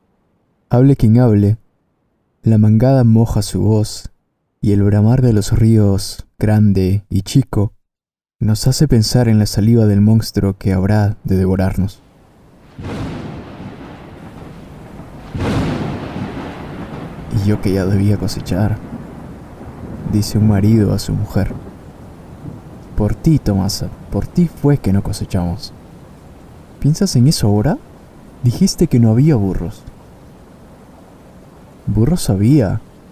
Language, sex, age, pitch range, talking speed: Spanish, male, 20-39, 100-120 Hz, 110 wpm